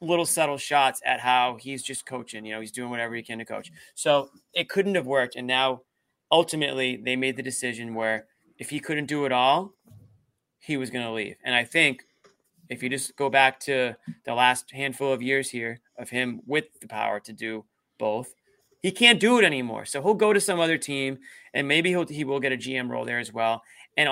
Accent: American